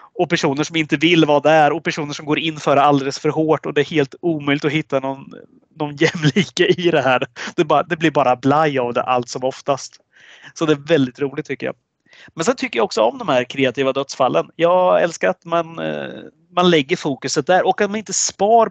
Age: 30-49